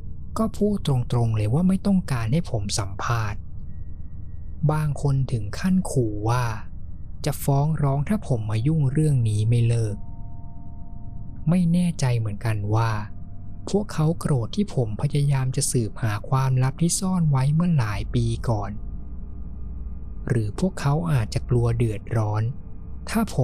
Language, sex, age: Thai, male, 20-39